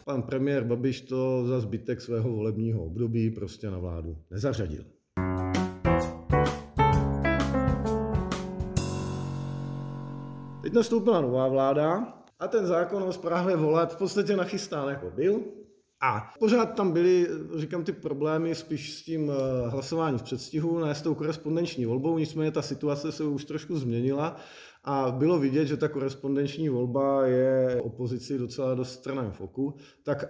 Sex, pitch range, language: male, 130-175 Hz, Czech